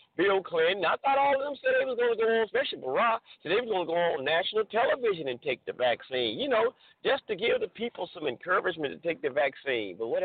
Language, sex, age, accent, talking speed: English, male, 50-69, American, 260 wpm